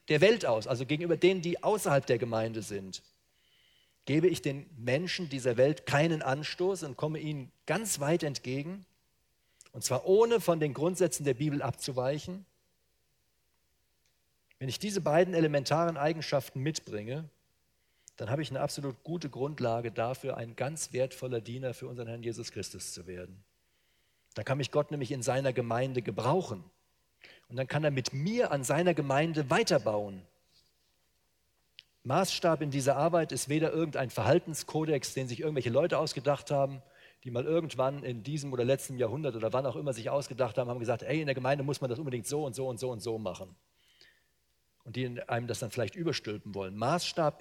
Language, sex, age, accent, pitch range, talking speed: German, male, 40-59, German, 125-160 Hz, 170 wpm